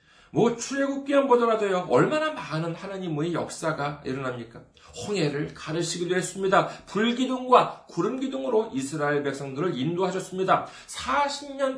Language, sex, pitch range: Korean, male, 160-245 Hz